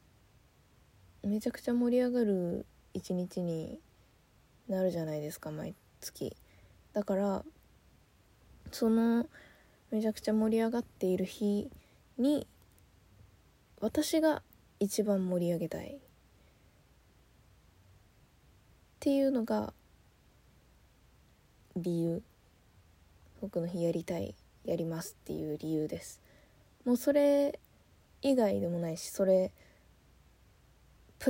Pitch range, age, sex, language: 170-245 Hz, 20-39, female, Japanese